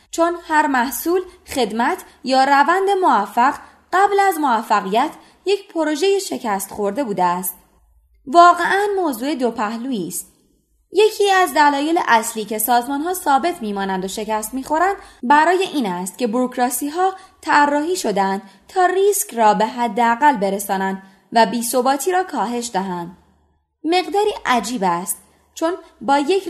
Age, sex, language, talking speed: 20-39, female, Persian, 130 wpm